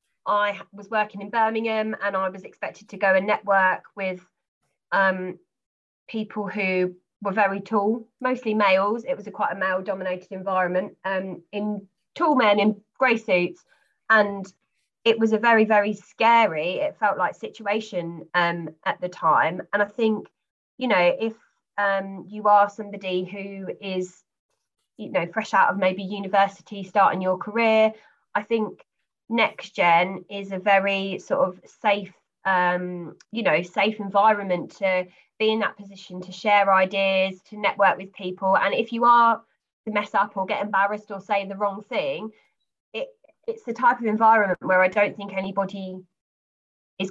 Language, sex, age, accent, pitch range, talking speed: English, female, 20-39, British, 190-220 Hz, 160 wpm